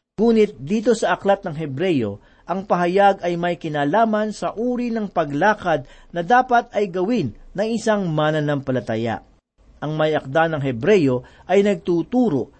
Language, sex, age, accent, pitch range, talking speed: Filipino, male, 50-69, native, 160-210 Hz, 140 wpm